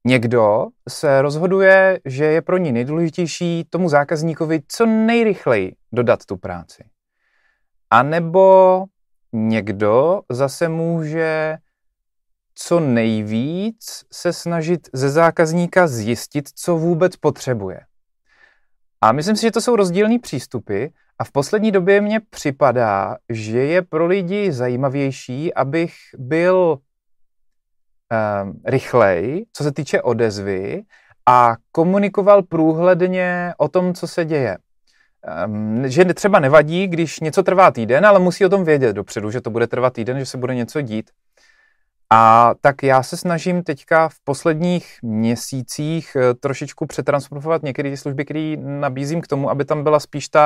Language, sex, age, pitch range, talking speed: Czech, male, 30-49, 125-175 Hz, 130 wpm